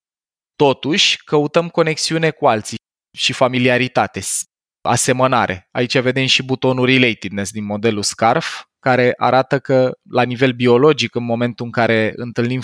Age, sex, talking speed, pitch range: 20-39, male, 130 wpm, 110-135 Hz